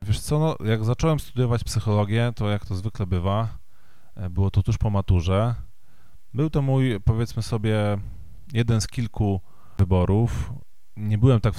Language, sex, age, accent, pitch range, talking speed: Polish, male, 20-39, native, 95-115 Hz, 150 wpm